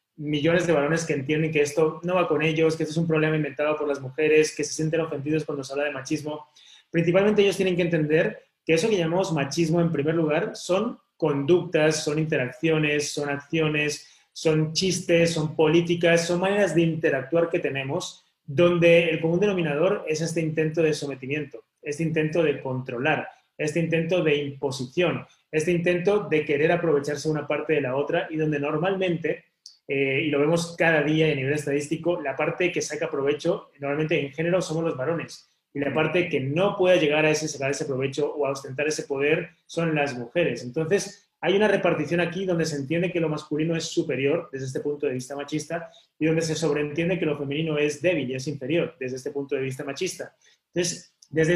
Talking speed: 195 wpm